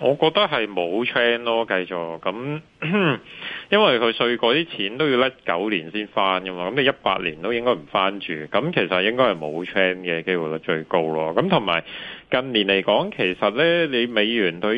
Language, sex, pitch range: Chinese, male, 85-110 Hz